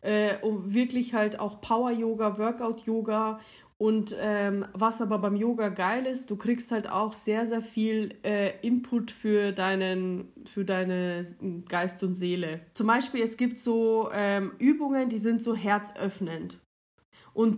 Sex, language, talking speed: female, German, 145 wpm